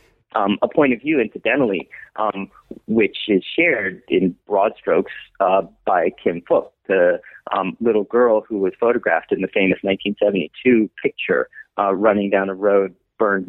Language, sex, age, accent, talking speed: English, male, 30-49, American, 155 wpm